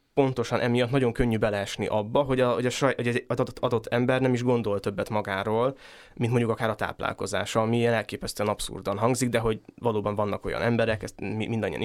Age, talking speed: 20-39, 205 wpm